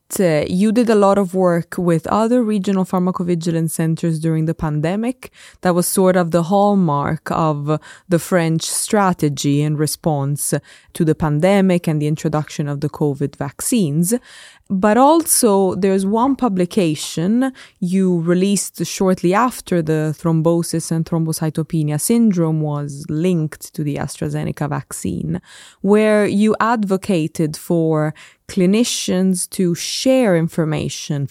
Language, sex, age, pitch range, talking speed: English, female, 20-39, 155-195 Hz, 125 wpm